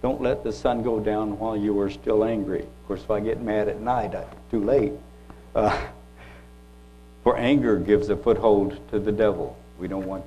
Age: 60-79